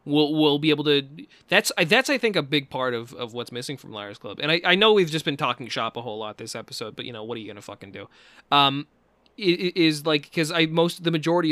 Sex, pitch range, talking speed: male, 120-160 Hz, 275 wpm